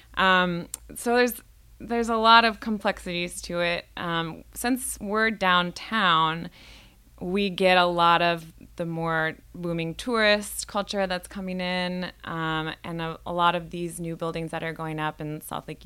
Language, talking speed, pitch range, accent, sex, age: English, 165 wpm, 160-185 Hz, American, female, 20-39